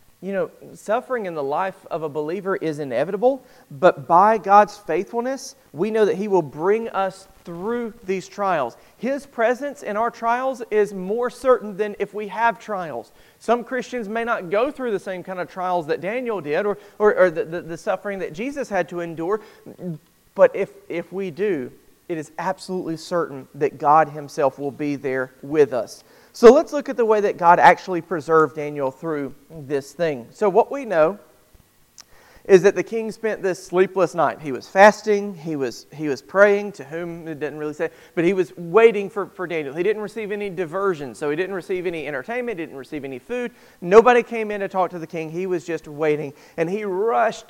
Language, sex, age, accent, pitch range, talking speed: English, male, 40-59, American, 160-215 Hz, 200 wpm